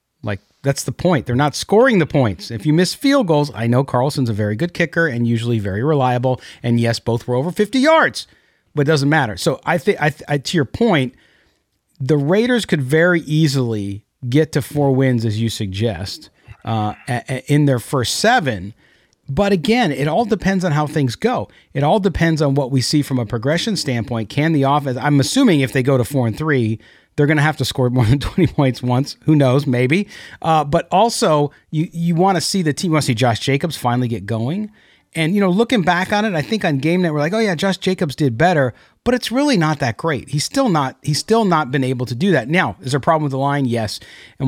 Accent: American